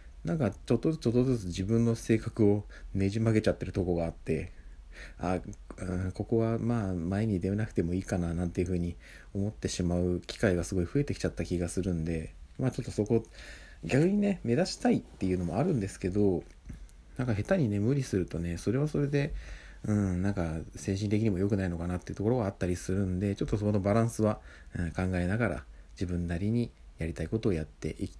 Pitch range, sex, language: 85-115 Hz, male, Japanese